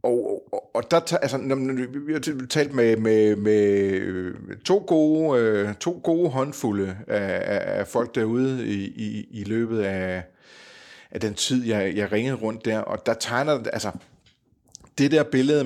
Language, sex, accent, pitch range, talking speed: Danish, male, native, 95-125 Hz, 150 wpm